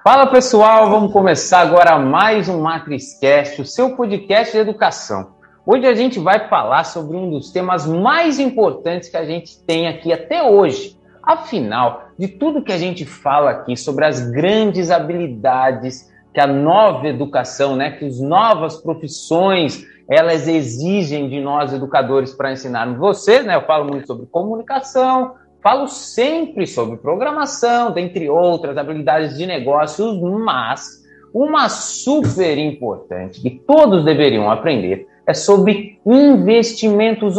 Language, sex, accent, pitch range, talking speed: Portuguese, male, Brazilian, 145-215 Hz, 140 wpm